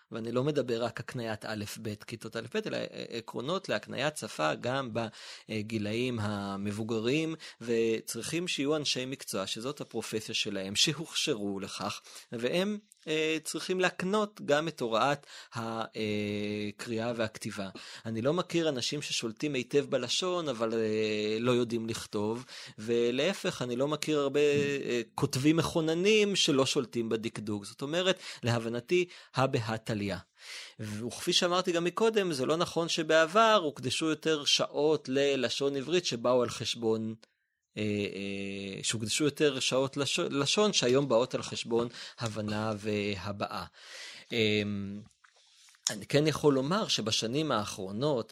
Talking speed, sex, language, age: 115 wpm, male, Hebrew, 30-49